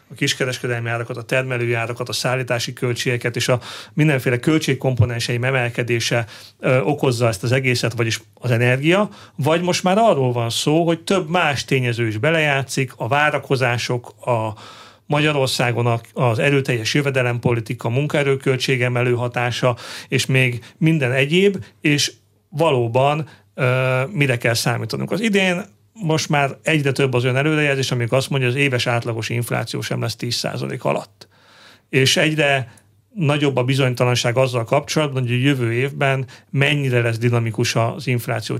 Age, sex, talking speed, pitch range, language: 40-59, male, 140 wpm, 120-140 Hz, Hungarian